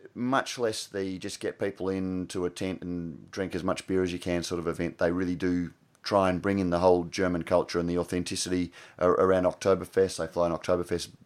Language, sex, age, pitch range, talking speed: English, male, 30-49, 90-100 Hz, 145 wpm